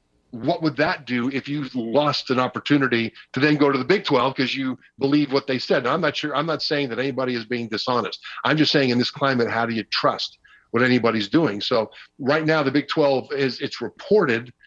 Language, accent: English, American